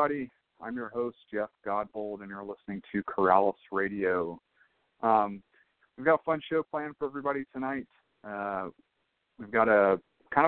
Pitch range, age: 95-120 Hz, 40-59